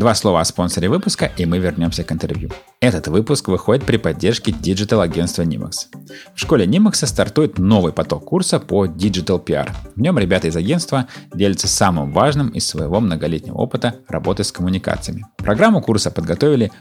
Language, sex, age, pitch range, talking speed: Russian, male, 30-49, 85-115 Hz, 165 wpm